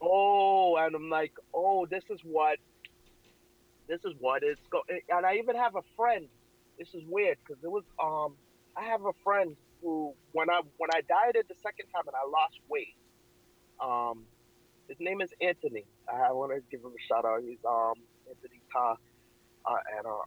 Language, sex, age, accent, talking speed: English, male, 30-49, American, 185 wpm